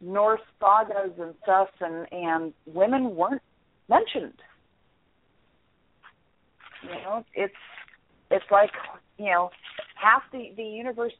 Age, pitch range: 40-59, 185-245 Hz